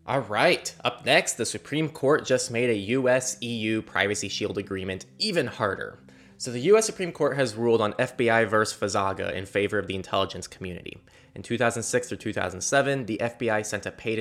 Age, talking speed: 20-39, 165 wpm